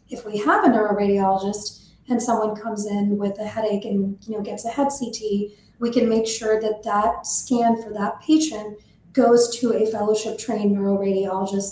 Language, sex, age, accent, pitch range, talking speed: English, female, 30-49, American, 200-230 Hz, 175 wpm